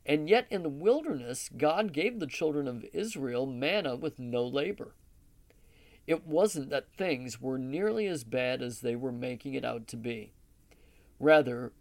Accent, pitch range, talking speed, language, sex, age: American, 130-200 Hz, 165 wpm, English, male, 50-69